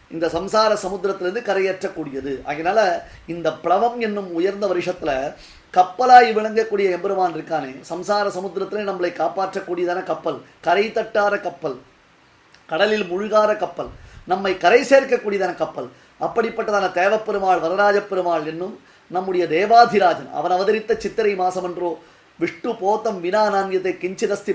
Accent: native